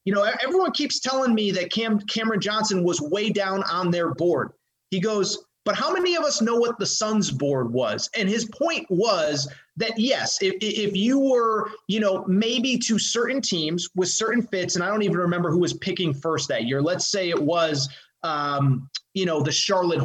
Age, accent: 30-49, American